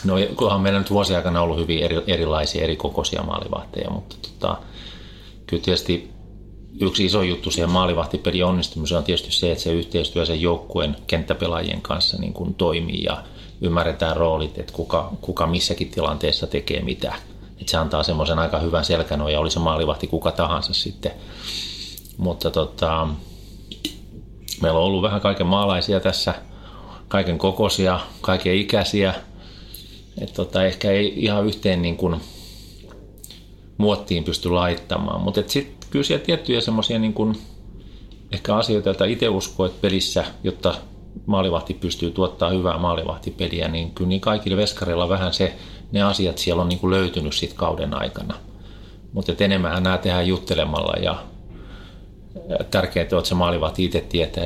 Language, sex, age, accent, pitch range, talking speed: Finnish, male, 30-49, native, 85-100 Hz, 145 wpm